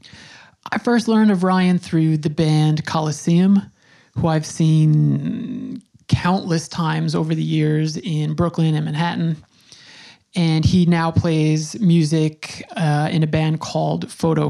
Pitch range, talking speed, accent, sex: 160-180 Hz, 130 wpm, American, male